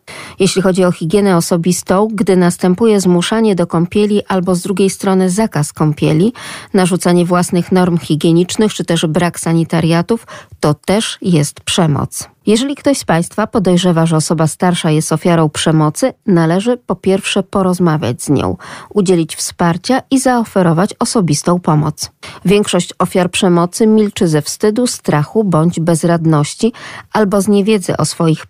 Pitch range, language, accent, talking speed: 165-210 Hz, Polish, native, 135 wpm